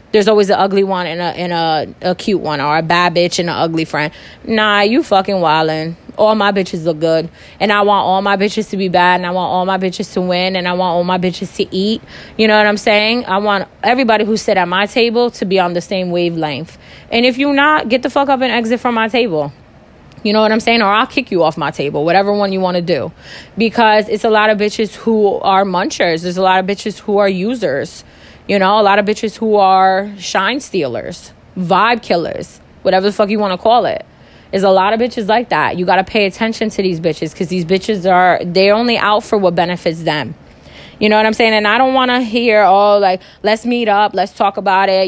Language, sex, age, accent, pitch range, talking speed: English, female, 20-39, American, 180-220 Hz, 250 wpm